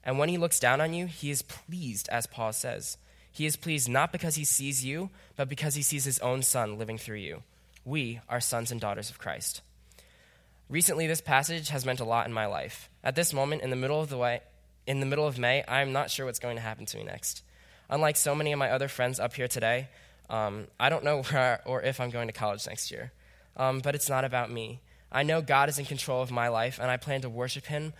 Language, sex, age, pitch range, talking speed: English, male, 10-29, 115-145 Hz, 250 wpm